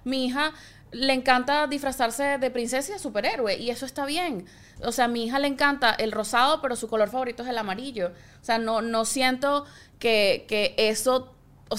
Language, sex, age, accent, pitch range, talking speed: Spanish, female, 20-39, Venezuelan, 200-265 Hz, 200 wpm